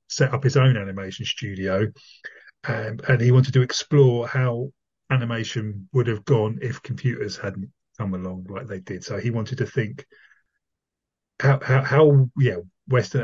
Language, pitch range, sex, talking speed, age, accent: English, 105-135 Hz, male, 160 wpm, 30-49, British